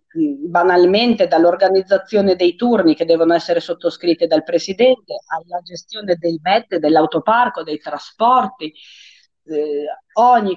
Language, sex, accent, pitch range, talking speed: Italian, female, native, 160-200 Hz, 110 wpm